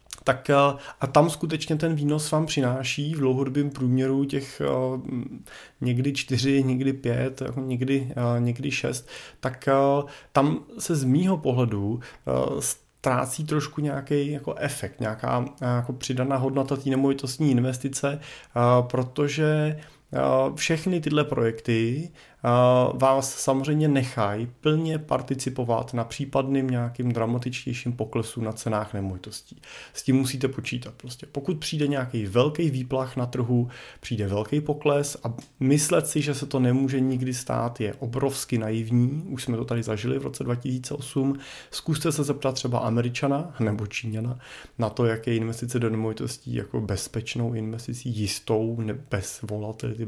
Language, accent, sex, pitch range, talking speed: Czech, native, male, 120-140 Hz, 130 wpm